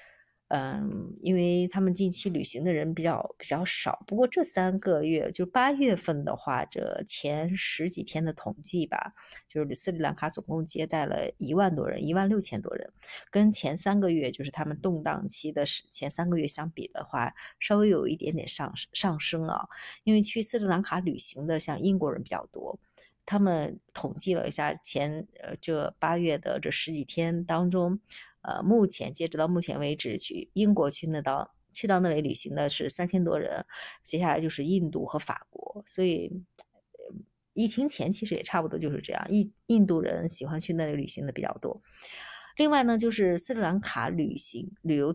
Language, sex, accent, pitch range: Chinese, female, native, 155-195 Hz